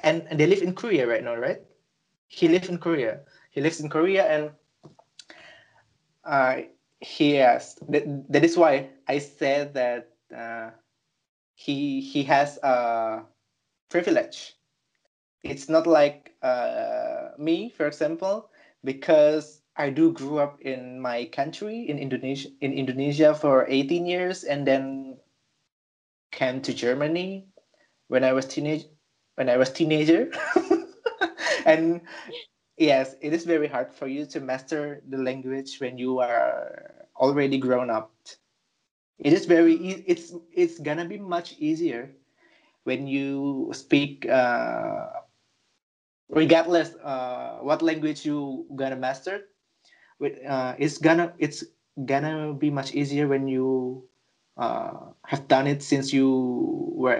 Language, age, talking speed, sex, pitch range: Indonesian, 20-39, 130 wpm, male, 135-175 Hz